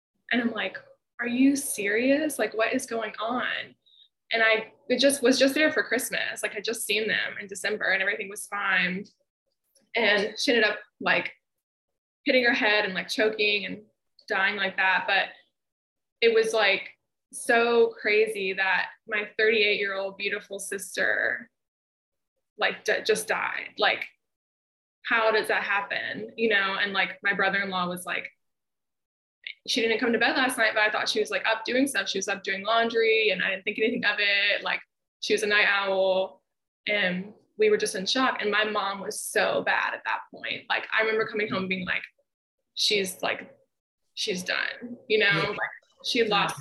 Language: English